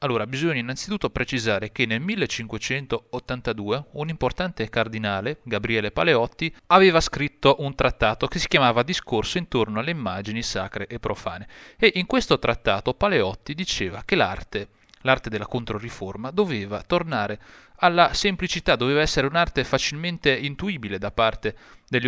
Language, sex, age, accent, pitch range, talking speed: Italian, male, 30-49, native, 110-165 Hz, 135 wpm